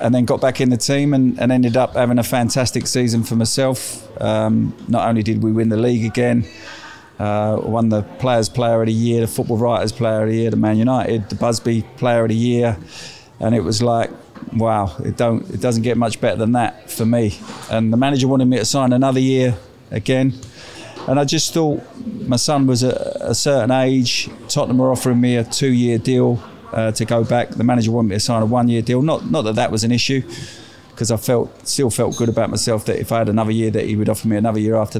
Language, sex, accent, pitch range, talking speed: English, male, British, 110-125 Hz, 235 wpm